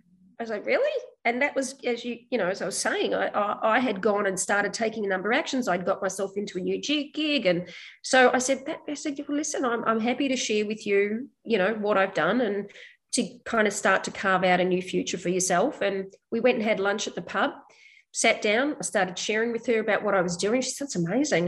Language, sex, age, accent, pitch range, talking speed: English, female, 30-49, Australian, 200-245 Hz, 265 wpm